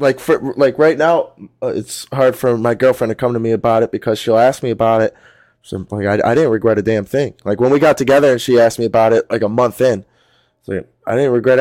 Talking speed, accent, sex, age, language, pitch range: 265 wpm, American, male, 20-39, English, 115-150 Hz